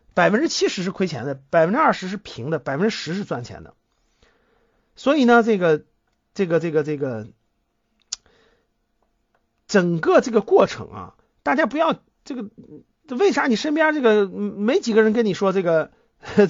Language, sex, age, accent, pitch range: Chinese, male, 50-69, native, 180-270 Hz